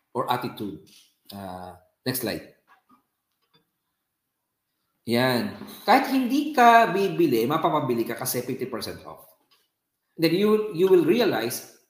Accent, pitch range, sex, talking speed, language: native, 115-165 Hz, male, 100 wpm, Filipino